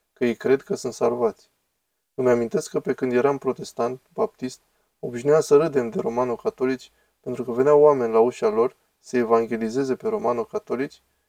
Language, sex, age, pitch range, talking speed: Romanian, male, 20-39, 120-165 Hz, 155 wpm